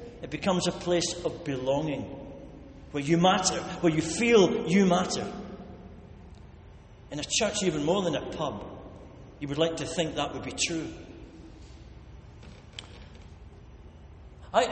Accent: British